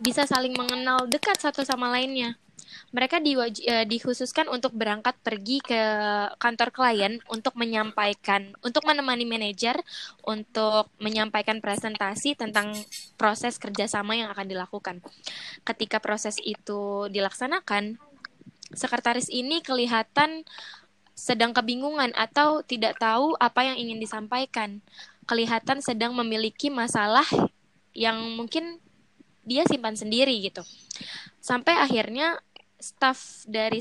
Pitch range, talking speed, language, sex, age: 215-260 Hz, 110 wpm, Indonesian, female, 20-39